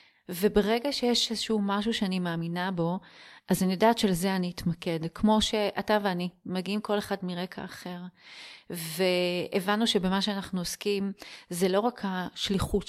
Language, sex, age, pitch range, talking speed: Hebrew, female, 30-49, 175-205 Hz, 135 wpm